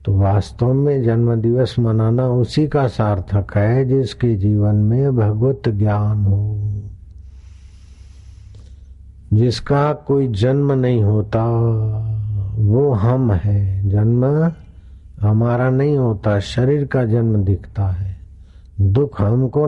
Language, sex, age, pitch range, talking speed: Hindi, male, 60-79, 100-130 Hz, 105 wpm